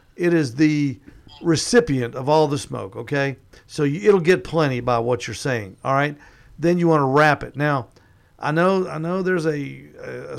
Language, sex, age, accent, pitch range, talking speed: English, male, 50-69, American, 125-165 Hz, 195 wpm